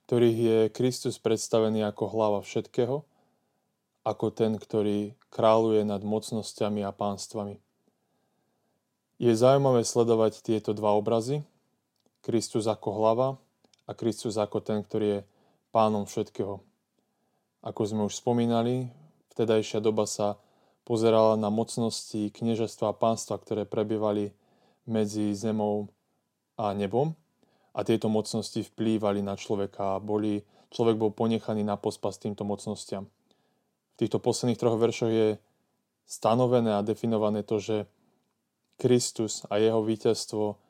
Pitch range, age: 105-115 Hz, 20-39